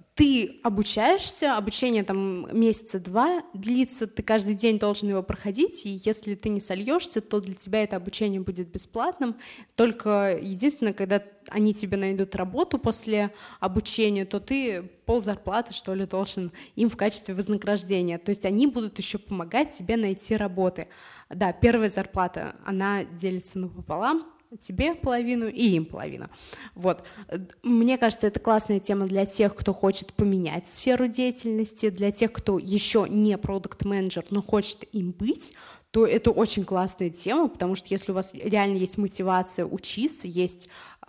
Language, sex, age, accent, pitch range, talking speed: Russian, female, 20-39, native, 190-225 Hz, 145 wpm